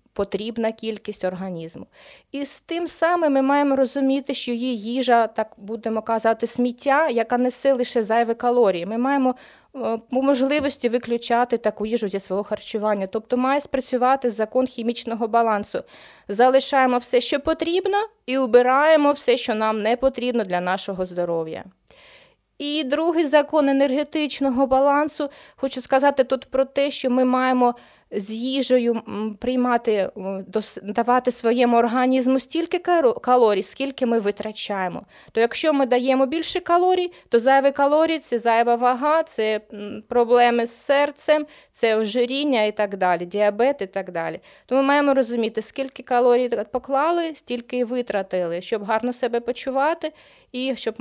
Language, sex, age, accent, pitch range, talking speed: Ukrainian, female, 20-39, native, 220-275 Hz, 135 wpm